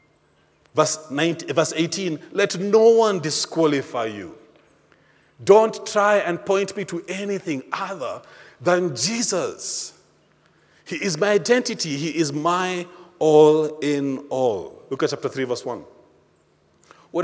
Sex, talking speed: male, 125 wpm